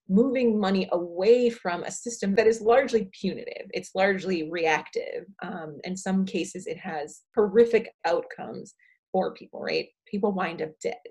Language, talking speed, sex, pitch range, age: English, 150 wpm, female, 185-235 Hz, 30-49